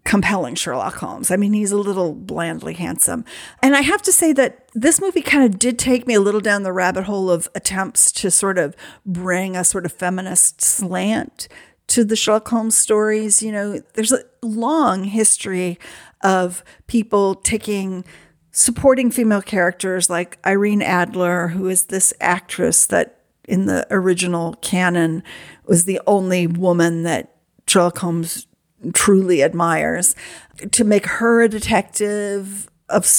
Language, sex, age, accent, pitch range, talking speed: English, female, 50-69, American, 180-215 Hz, 150 wpm